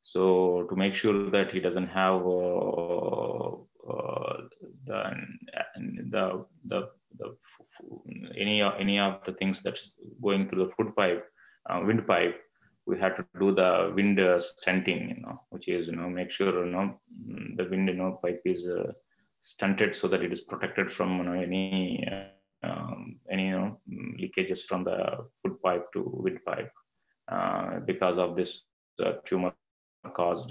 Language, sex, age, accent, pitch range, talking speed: English, male, 20-39, Indian, 90-100 Hz, 165 wpm